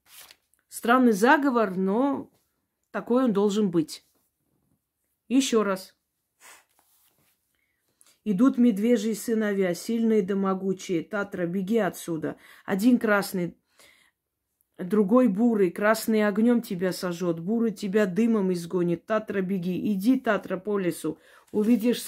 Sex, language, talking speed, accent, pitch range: female, Russian, 100 wpm, native, 195-230 Hz